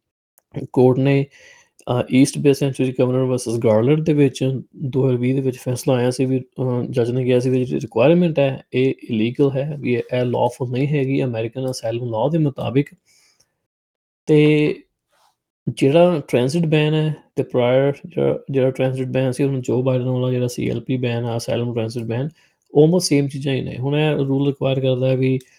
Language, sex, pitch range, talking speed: Punjabi, male, 125-140 Hz, 165 wpm